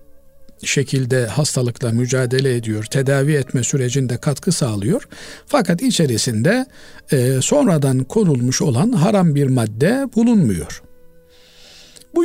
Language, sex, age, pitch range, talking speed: Turkish, male, 50-69, 130-170 Hz, 100 wpm